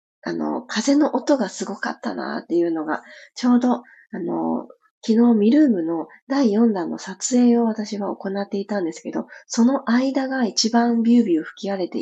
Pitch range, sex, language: 190-265 Hz, female, Japanese